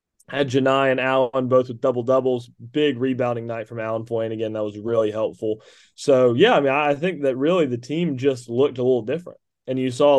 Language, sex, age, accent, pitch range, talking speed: English, male, 20-39, American, 125-145 Hz, 210 wpm